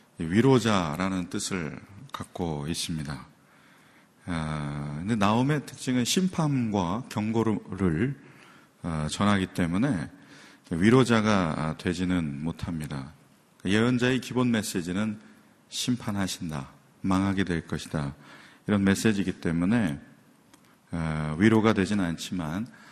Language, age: Korean, 40-59